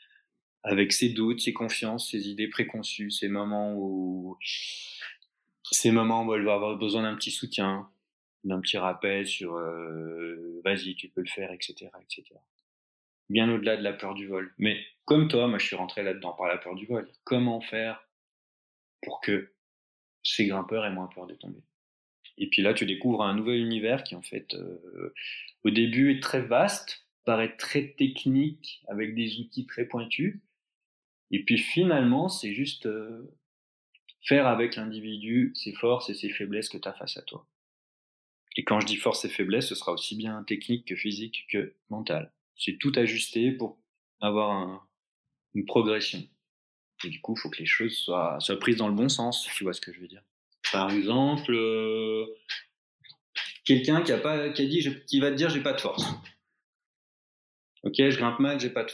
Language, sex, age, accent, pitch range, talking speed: French, male, 20-39, French, 100-125 Hz, 185 wpm